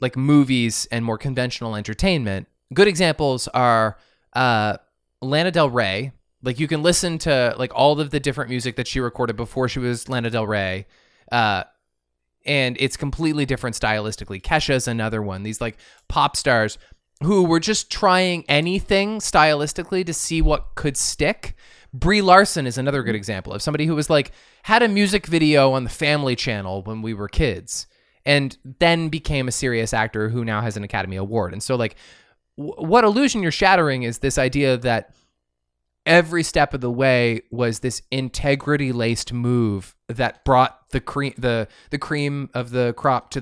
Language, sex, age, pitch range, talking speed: English, male, 20-39, 115-155 Hz, 175 wpm